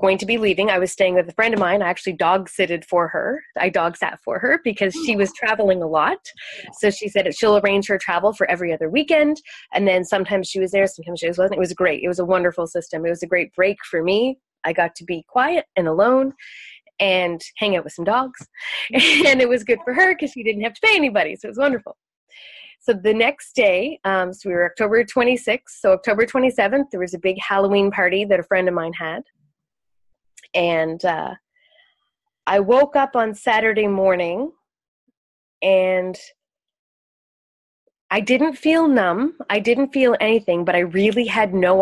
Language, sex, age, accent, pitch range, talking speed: English, female, 20-39, American, 180-245 Hz, 200 wpm